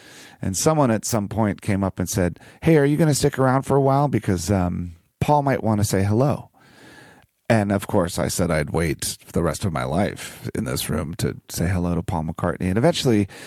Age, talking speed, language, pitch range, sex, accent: 30-49, 225 wpm, Dutch, 100-135 Hz, male, American